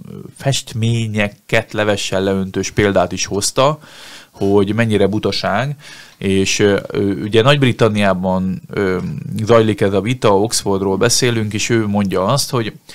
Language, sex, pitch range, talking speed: Hungarian, male, 95-120 Hz, 115 wpm